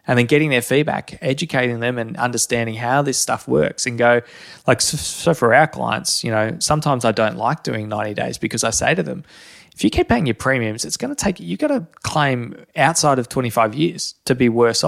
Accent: Australian